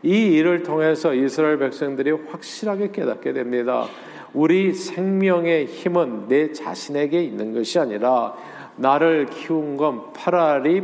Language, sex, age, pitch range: Korean, male, 40-59, 125-170 Hz